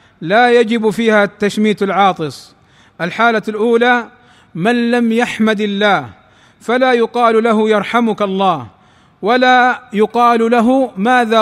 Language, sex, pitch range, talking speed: Arabic, male, 210-245 Hz, 105 wpm